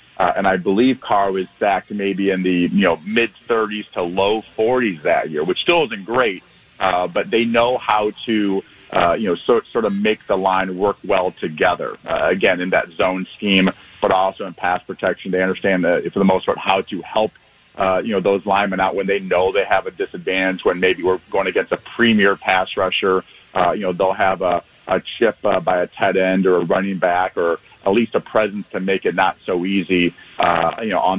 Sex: male